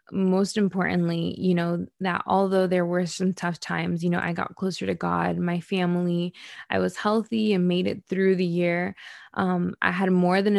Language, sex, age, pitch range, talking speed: English, female, 20-39, 170-195 Hz, 195 wpm